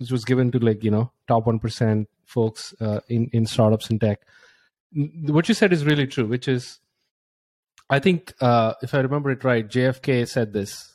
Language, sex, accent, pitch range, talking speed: English, male, Indian, 115-135 Hz, 190 wpm